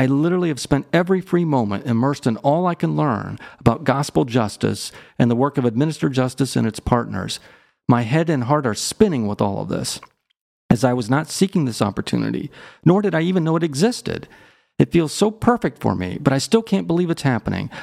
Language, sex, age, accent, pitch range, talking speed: English, male, 40-59, American, 120-160 Hz, 210 wpm